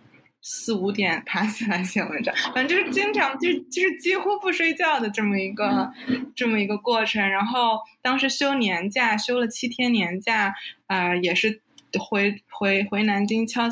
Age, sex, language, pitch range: 20-39, female, Chinese, 185-235 Hz